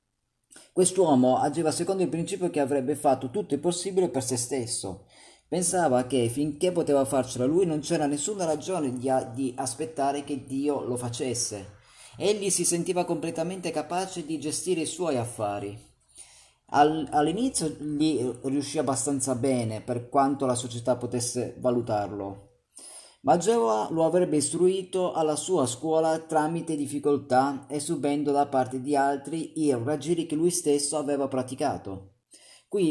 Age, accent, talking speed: 30-49, native, 135 wpm